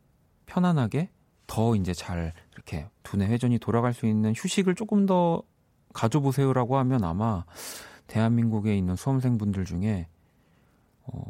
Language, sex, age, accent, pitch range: Korean, male, 40-59, native, 95-135 Hz